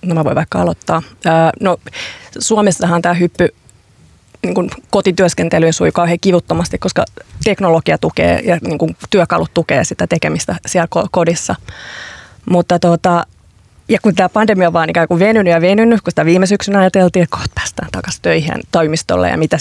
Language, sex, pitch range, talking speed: Finnish, female, 170-200 Hz, 155 wpm